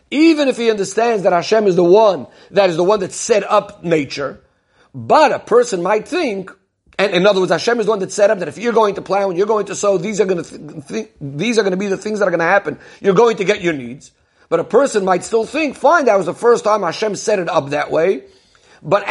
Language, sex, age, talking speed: English, male, 50-69, 275 wpm